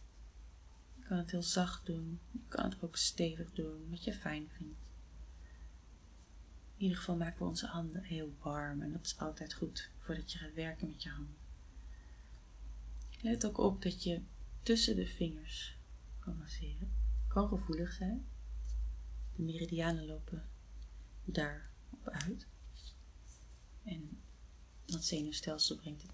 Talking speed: 140 wpm